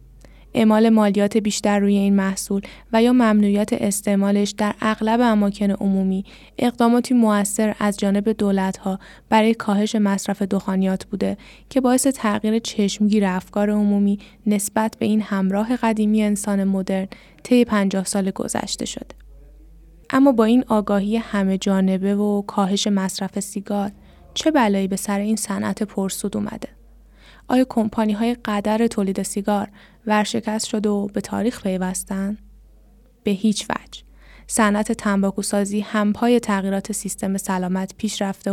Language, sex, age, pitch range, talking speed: Persian, female, 10-29, 195-220 Hz, 130 wpm